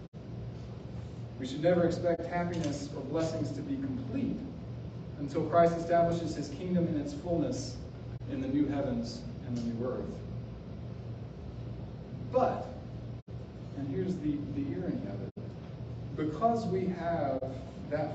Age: 40-59